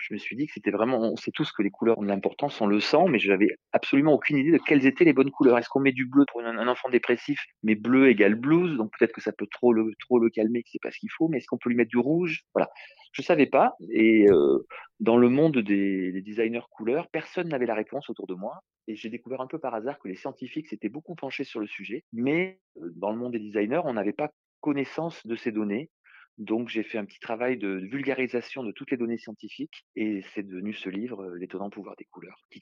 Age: 30-49